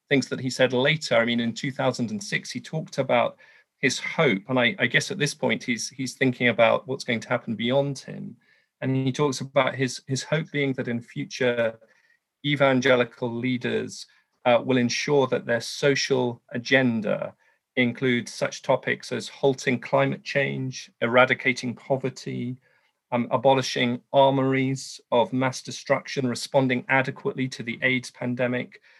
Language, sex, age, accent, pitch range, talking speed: English, male, 40-59, British, 125-145 Hz, 150 wpm